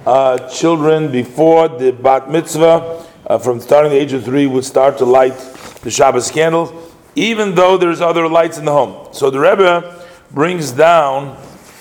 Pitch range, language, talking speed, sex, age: 125-165 Hz, English, 170 wpm, male, 40-59